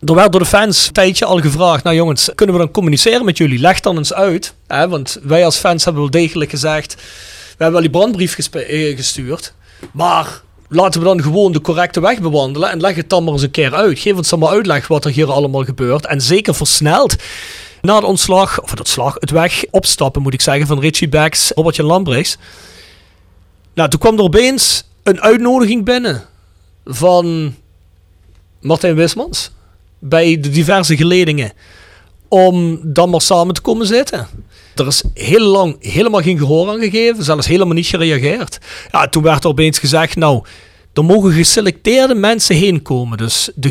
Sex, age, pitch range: male, 40-59, 140-190 Hz